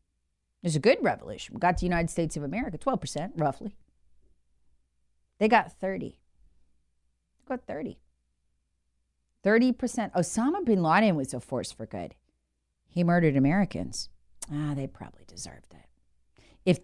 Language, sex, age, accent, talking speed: English, female, 40-59, American, 140 wpm